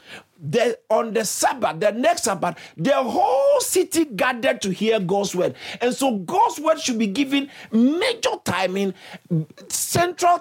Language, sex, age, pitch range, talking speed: English, male, 50-69, 200-320 Hz, 145 wpm